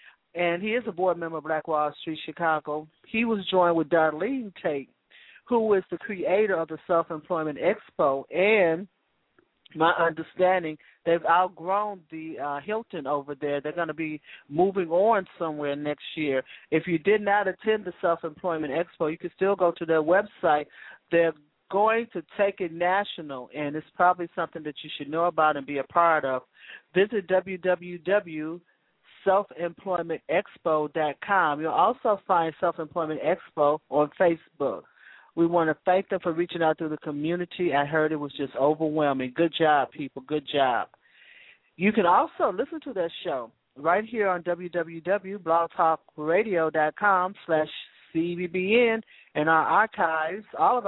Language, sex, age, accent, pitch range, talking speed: English, male, 40-59, American, 155-190 Hz, 155 wpm